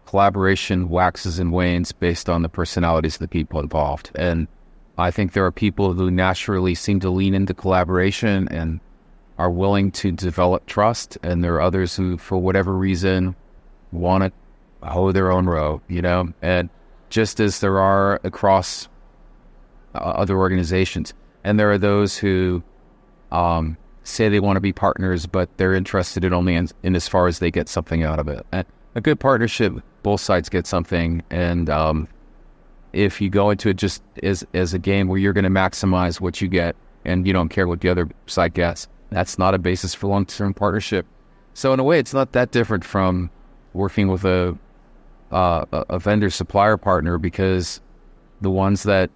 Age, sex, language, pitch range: 30-49, male, English, 90-100 Hz